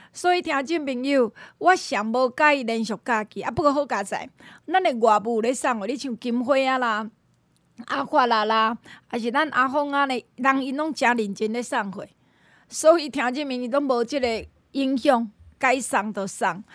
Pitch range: 235-320 Hz